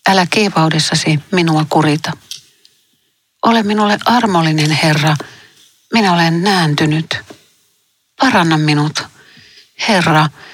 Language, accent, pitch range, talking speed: Finnish, native, 150-185 Hz, 80 wpm